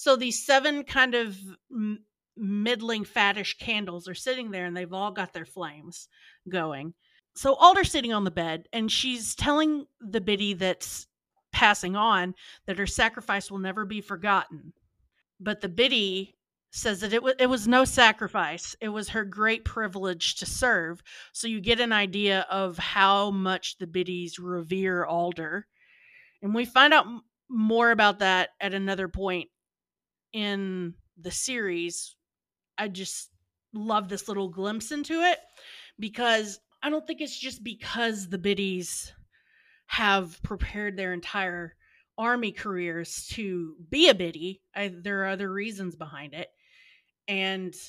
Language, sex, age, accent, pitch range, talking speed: English, female, 40-59, American, 185-230 Hz, 145 wpm